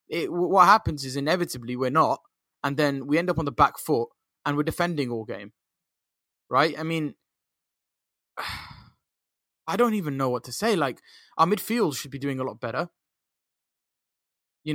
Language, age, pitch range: English, 20-39, 135-200 Hz